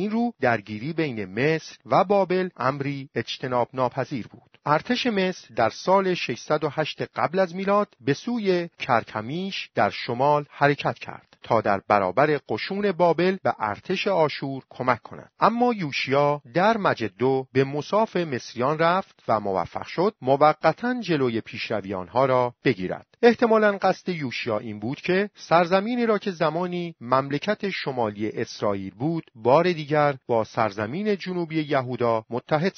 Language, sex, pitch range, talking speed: Persian, male, 120-185 Hz, 135 wpm